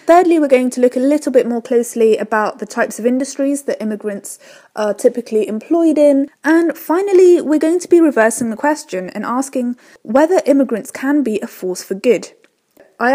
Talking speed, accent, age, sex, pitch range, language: 185 wpm, British, 20-39, female, 205-275 Hz, English